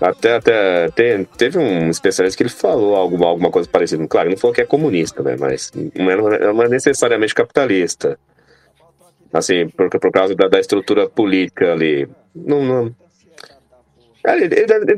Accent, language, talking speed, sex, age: Brazilian, Portuguese, 170 wpm, male, 30-49